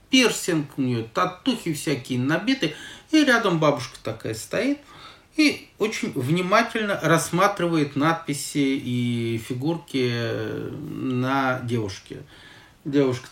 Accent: native